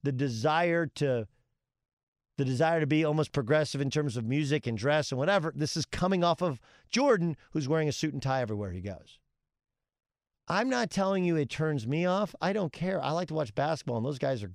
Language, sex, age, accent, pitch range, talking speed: English, male, 40-59, American, 125-160 Hz, 215 wpm